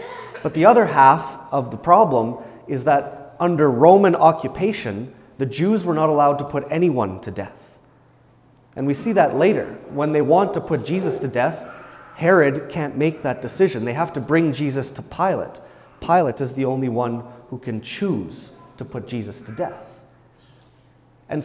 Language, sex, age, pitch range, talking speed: English, male, 30-49, 125-165 Hz, 170 wpm